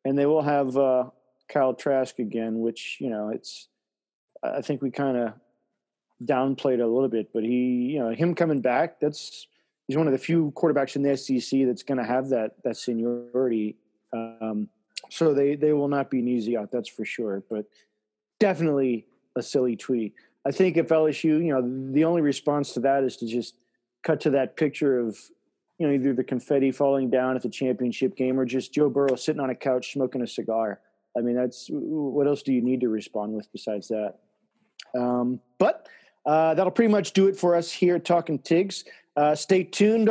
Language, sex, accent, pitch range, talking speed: English, male, American, 125-165 Hz, 200 wpm